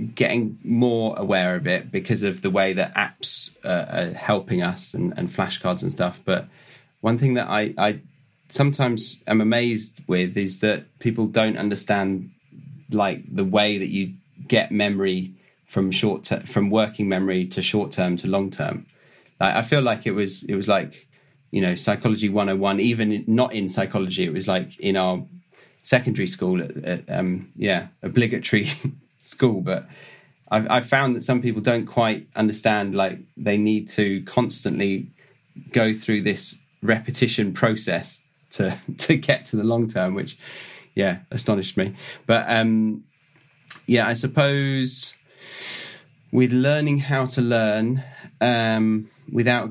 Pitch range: 100-125 Hz